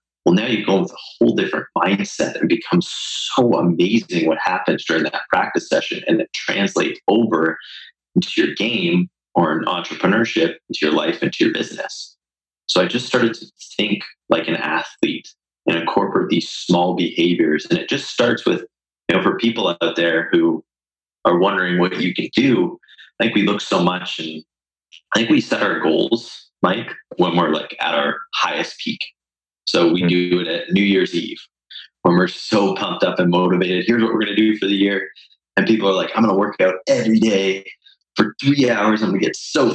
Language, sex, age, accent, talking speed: English, male, 30-49, American, 200 wpm